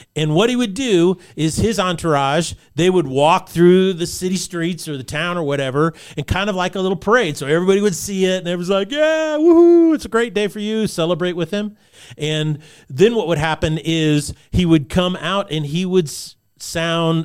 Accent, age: American, 40-59